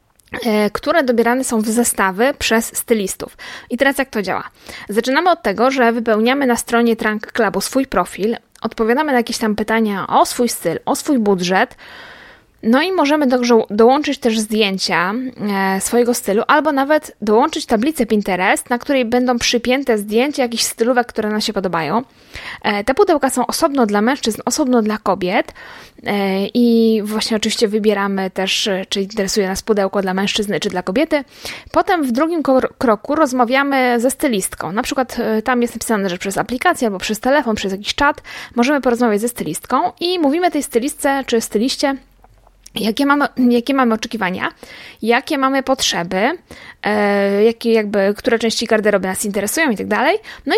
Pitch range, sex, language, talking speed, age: 215-265 Hz, female, Polish, 155 wpm, 20-39